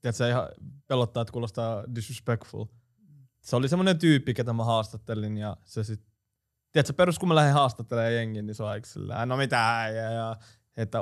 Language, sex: Finnish, male